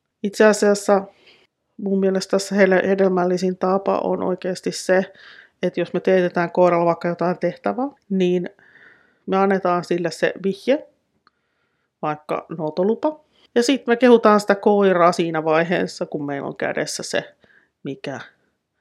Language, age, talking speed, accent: Finnish, 30-49, 130 wpm, native